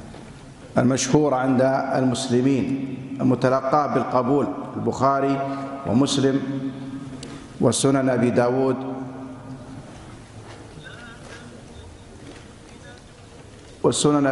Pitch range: 125-145 Hz